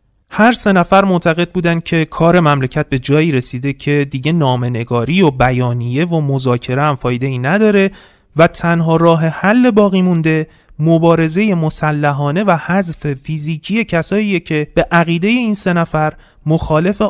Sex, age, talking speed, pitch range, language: male, 30-49, 140 wpm, 140-185 Hz, Persian